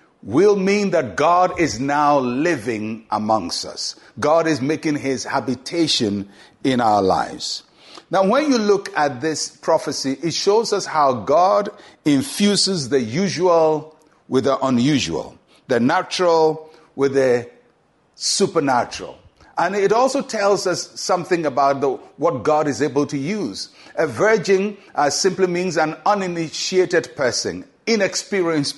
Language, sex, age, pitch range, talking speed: English, male, 60-79, 145-195 Hz, 130 wpm